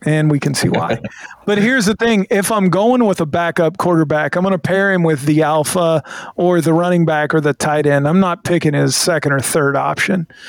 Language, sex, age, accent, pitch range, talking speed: English, male, 40-59, American, 150-180 Hz, 230 wpm